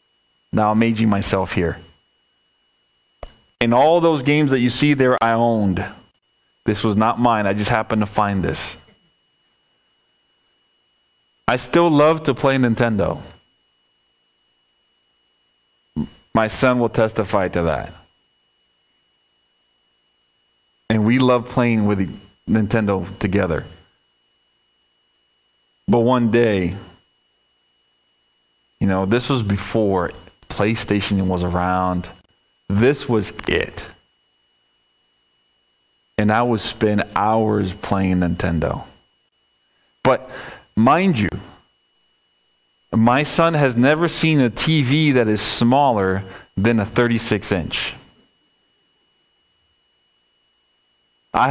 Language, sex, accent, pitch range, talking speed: English, male, American, 100-130 Hz, 95 wpm